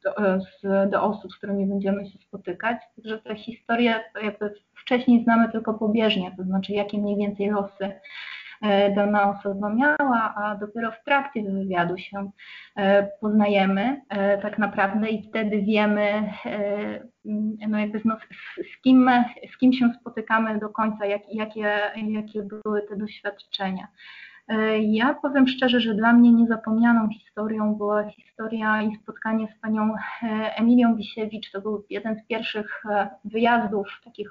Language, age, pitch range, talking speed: Polish, 20-39, 200-225 Hz, 145 wpm